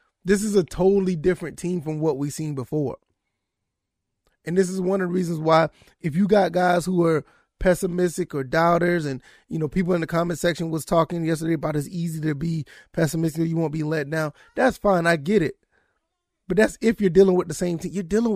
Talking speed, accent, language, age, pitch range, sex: 220 wpm, American, English, 20-39, 155-195 Hz, male